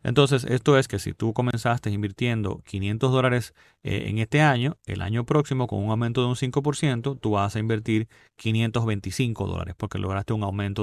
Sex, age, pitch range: male, 30-49, 105-135 Hz